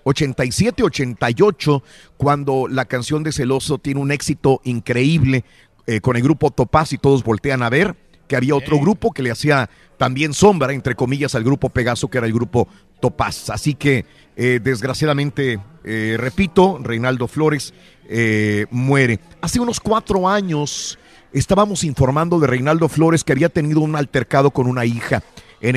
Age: 50-69